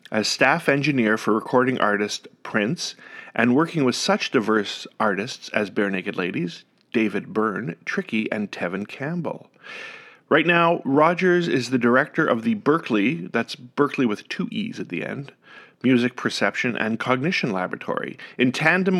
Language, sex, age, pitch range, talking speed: English, male, 40-59, 115-160 Hz, 150 wpm